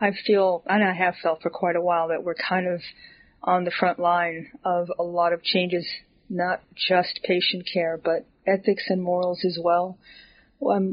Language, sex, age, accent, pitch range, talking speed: English, female, 30-49, American, 175-195 Hz, 185 wpm